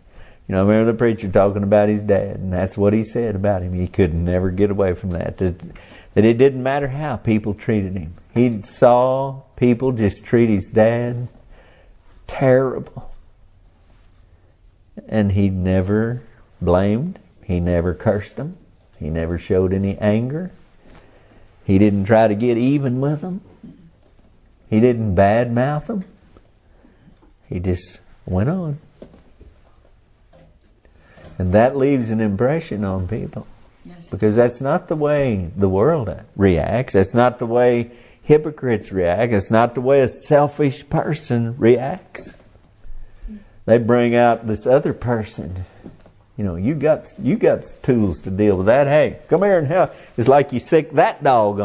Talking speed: 150 wpm